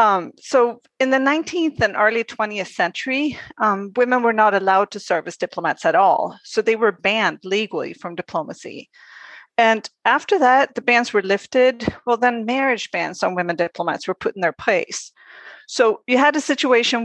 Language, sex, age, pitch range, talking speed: English, female, 40-59, 190-250 Hz, 180 wpm